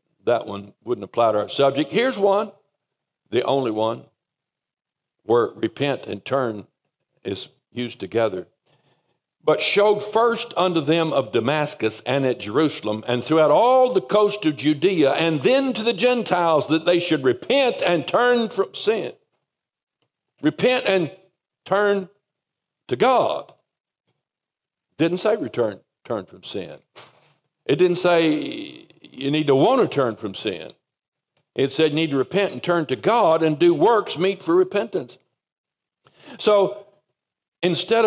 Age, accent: 60-79, American